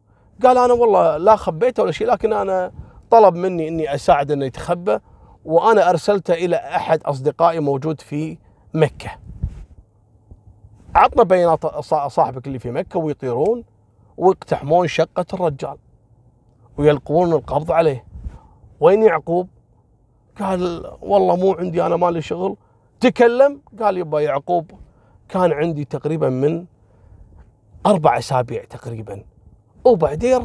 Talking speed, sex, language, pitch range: 110 wpm, male, Arabic, 115-180 Hz